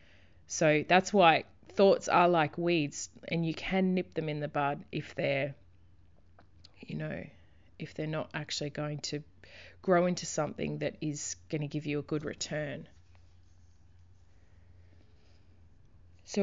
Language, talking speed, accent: English, 140 wpm, Australian